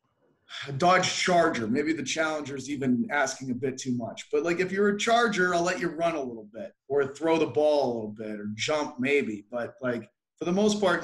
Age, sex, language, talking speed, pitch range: 30-49, male, French, 225 wpm, 130-175 Hz